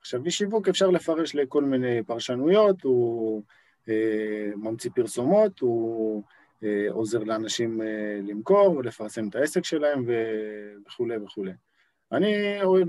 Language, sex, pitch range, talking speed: Hebrew, male, 110-145 Hz, 100 wpm